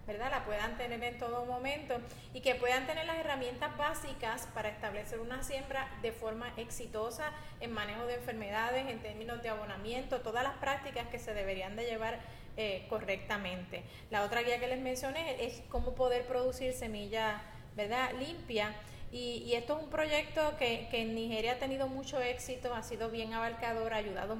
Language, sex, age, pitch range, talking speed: Spanish, female, 30-49, 225-260 Hz, 175 wpm